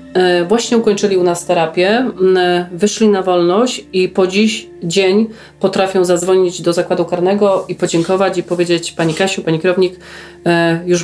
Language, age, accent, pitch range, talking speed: Polish, 40-59, native, 175-195 Hz, 140 wpm